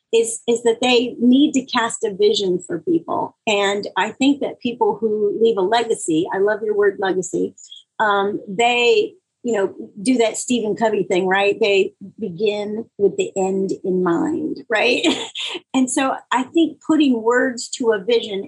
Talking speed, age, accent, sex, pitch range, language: 170 wpm, 40-59, American, female, 205-300 Hz, English